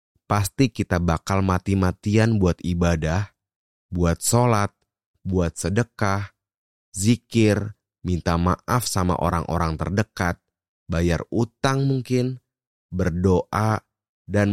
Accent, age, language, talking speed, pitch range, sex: native, 30-49, Indonesian, 85 wpm, 80-105 Hz, male